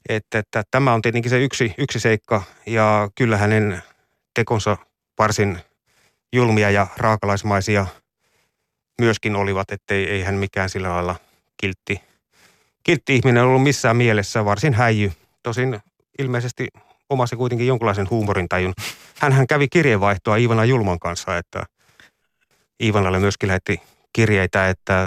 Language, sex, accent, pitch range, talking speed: Finnish, male, native, 95-115 Hz, 120 wpm